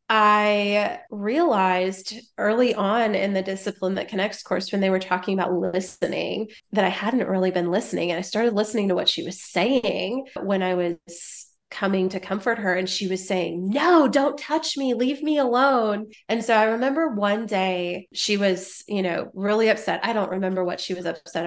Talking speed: 190 wpm